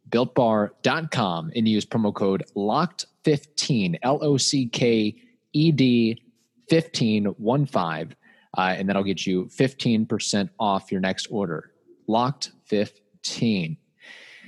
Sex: male